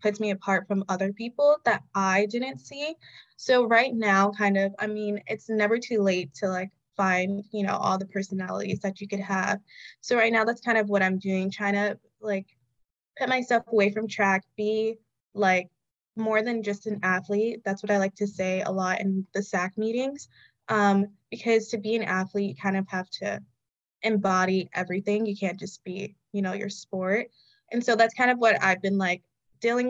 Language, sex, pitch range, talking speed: English, female, 190-225 Hz, 200 wpm